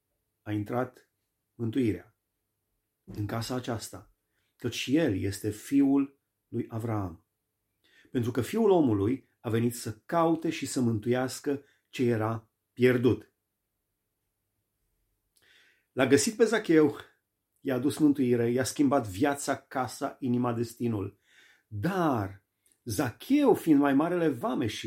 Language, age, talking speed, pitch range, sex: Romanian, 30-49, 110 wpm, 110-155 Hz, male